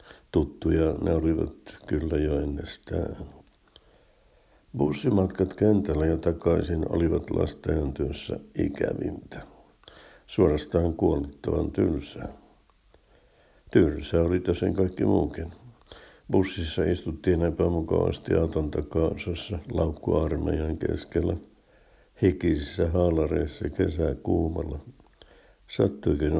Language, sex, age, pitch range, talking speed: Finnish, male, 60-79, 75-90 Hz, 75 wpm